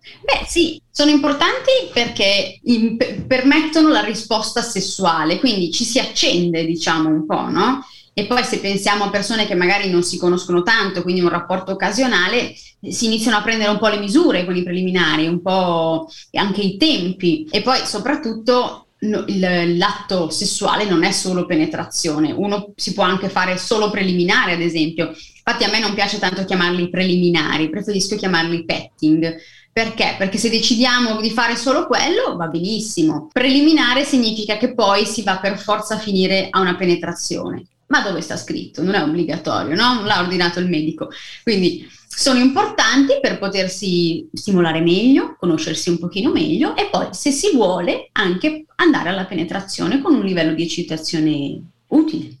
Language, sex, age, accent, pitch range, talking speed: Italian, female, 20-39, native, 175-240 Hz, 160 wpm